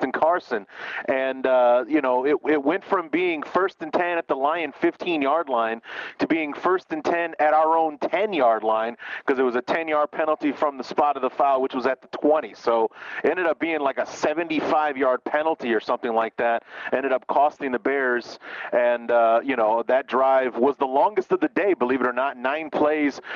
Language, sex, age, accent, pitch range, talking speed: English, male, 30-49, American, 130-165 Hz, 215 wpm